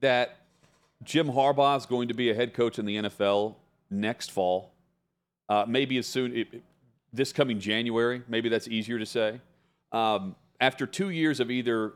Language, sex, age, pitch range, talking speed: English, male, 40-59, 110-140 Hz, 170 wpm